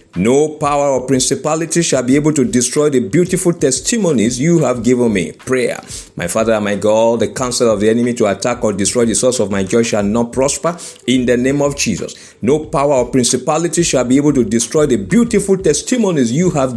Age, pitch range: 50-69, 120-160 Hz